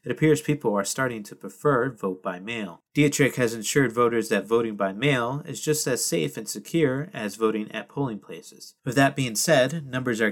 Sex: male